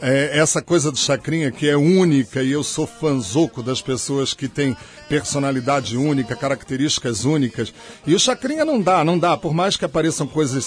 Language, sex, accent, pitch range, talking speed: Portuguese, male, Brazilian, 140-180 Hz, 175 wpm